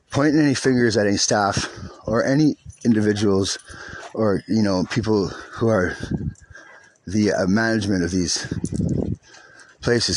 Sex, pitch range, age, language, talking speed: male, 110-150 Hz, 30-49, English, 125 wpm